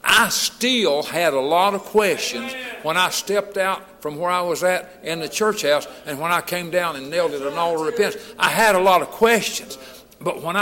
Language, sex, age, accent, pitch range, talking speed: English, male, 60-79, American, 180-225 Hz, 225 wpm